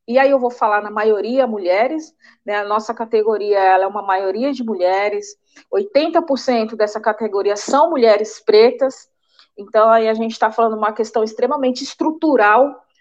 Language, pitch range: Portuguese, 210-275 Hz